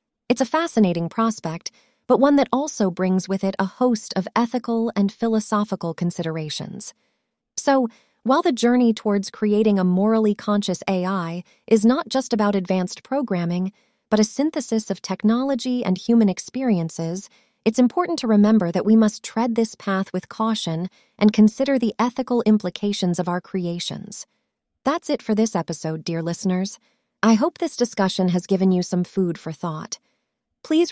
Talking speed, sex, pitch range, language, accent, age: 155 wpm, female, 185-235 Hz, English, American, 30-49